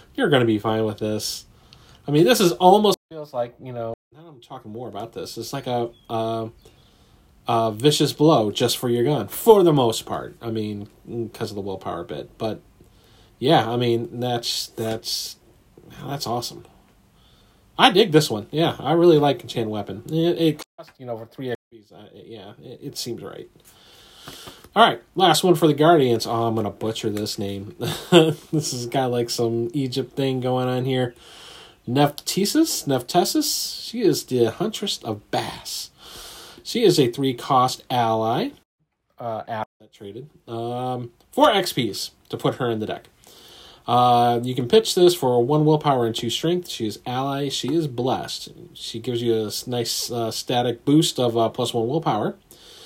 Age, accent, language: 30-49, American, English